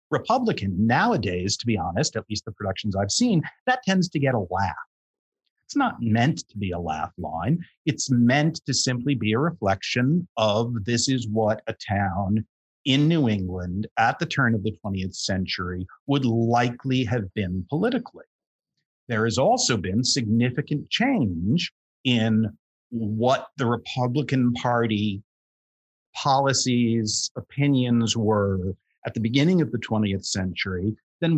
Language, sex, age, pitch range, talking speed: English, male, 50-69, 100-125 Hz, 145 wpm